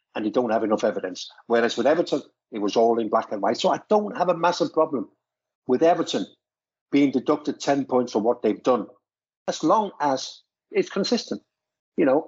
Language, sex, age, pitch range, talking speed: English, male, 60-79, 115-150 Hz, 195 wpm